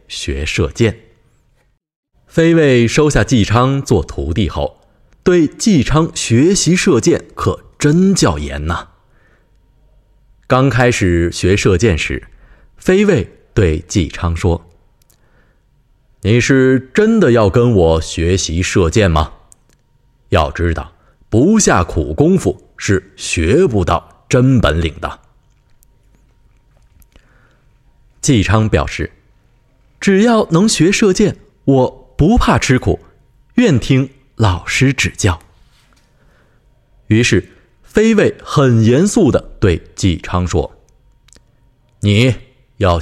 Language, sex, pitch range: Chinese, male, 90-135 Hz